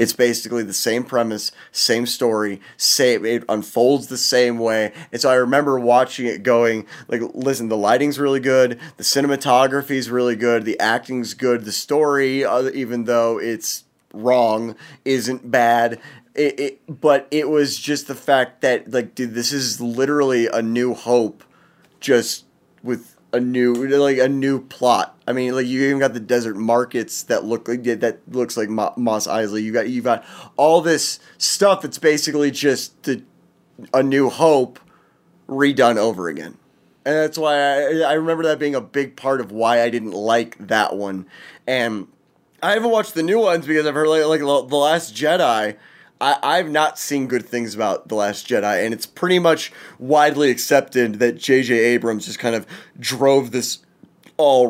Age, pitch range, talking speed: 30-49, 115-145 Hz, 175 wpm